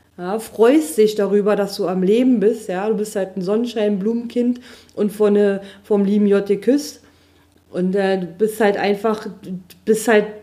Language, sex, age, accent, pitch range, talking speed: German, female, 40-59, German, 180-225 Hz, 165 wpm